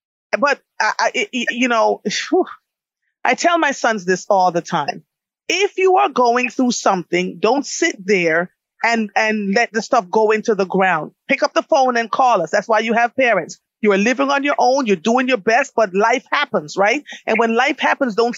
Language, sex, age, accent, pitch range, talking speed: English, female, 30-49, American, 220-265 Hz, 210 wpm